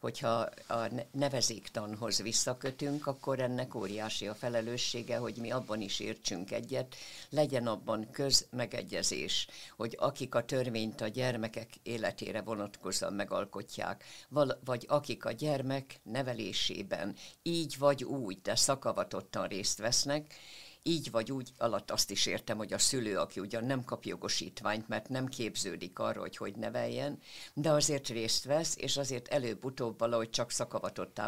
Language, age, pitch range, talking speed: Hungarian, 60-79, 115-140 Hz, 135 wpm